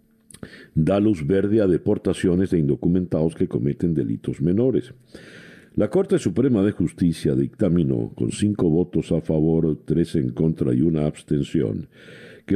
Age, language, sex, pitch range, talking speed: 50-69, Spanish, male, 80-100 Hz, 140 wpm